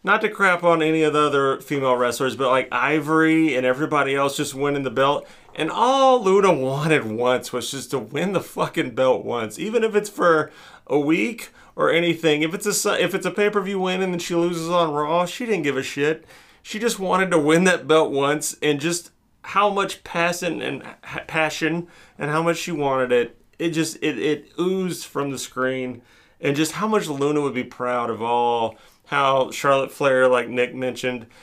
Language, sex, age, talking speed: English, male, 30-49, 200 wpm